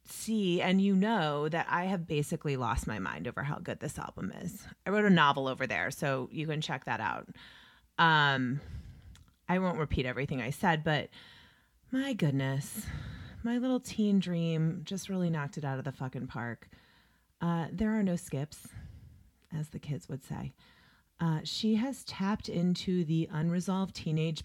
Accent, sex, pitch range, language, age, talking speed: American, female, 135-185 Hz, English, 30-49, 170 wpm